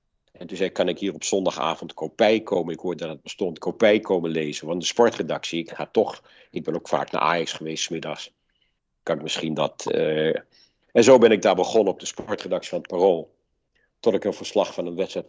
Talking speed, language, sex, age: 225 wpm, Dutch, male, 50-69